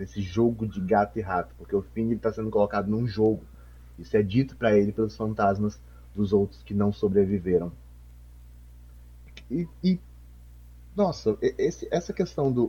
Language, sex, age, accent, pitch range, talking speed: Portuguese, male, 30-49, Brazilian, 90-150 Hz, 155 wpm